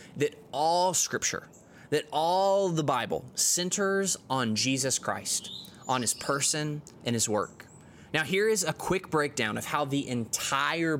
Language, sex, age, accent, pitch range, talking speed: English, male, 20-39, American, 130-170 Hz, 145 wpm